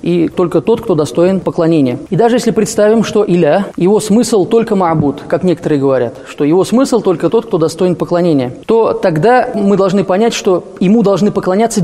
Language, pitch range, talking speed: Russian, 165-215 Hz, 180 wpm